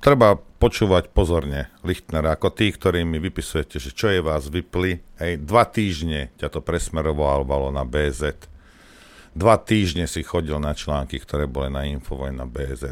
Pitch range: 70-90 Hz